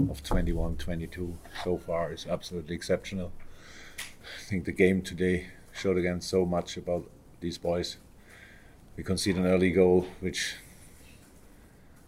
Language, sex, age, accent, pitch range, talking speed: English, male, 50-69, German, 85-95 Hz, 130 wpm